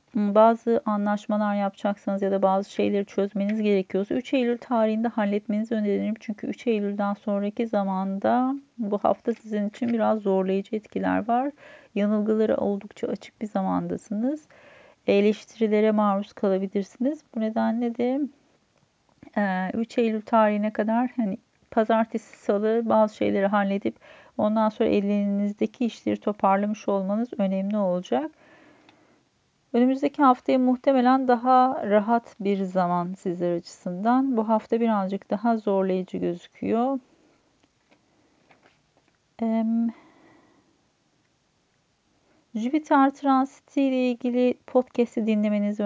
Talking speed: 100 wpm